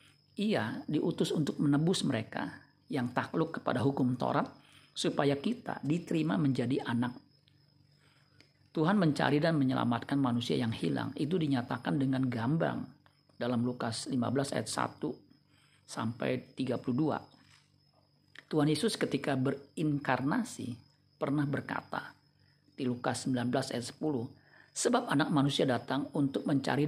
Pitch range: 130-155 Hz